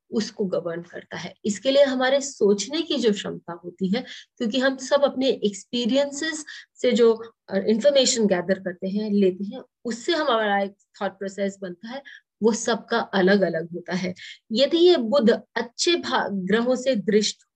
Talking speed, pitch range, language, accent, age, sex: 155 wpm, 200-265 Hz, English, Indian, 30-49, female